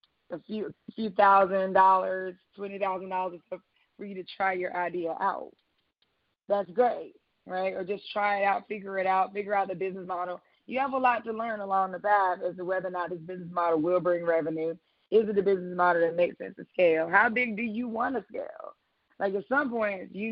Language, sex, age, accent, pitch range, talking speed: English, female, 20-39, American, 175-200 Hz, 215 wpm